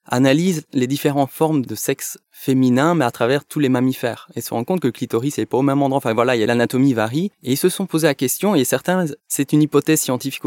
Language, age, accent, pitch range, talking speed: French, 20-39, French, 125-160 Hz, 260 wpm